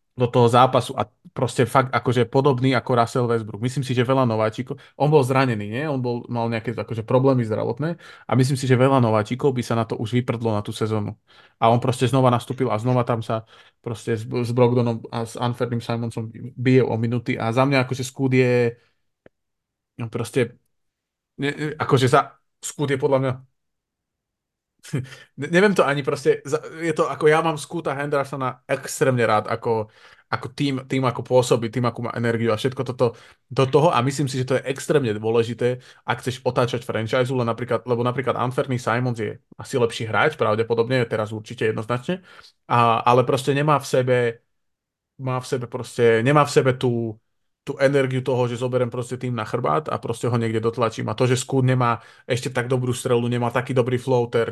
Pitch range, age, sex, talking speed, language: 115-130 Hz, 20-39, male, 185 wpm, Slovak